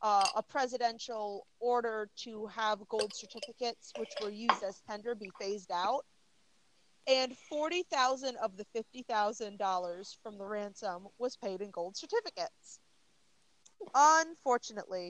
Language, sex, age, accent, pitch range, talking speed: English, female, 30-49, American, 205-265 Hz, 120 wpm